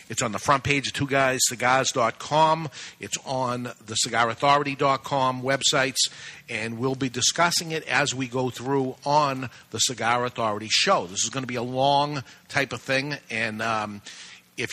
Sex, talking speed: male, 160 wpm